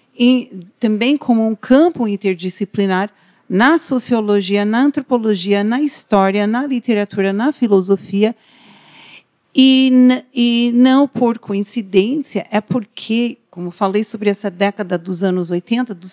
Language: Portuguese